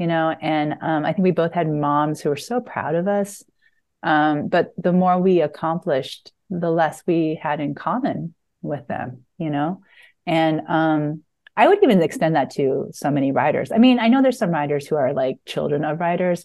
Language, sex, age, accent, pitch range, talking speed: English, female, 30-49, American, 150-185 Hz, 205 wpm